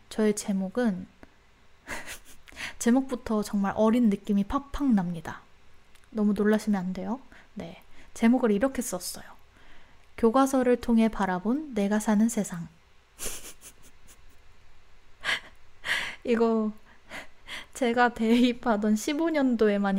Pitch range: 195-240 Hz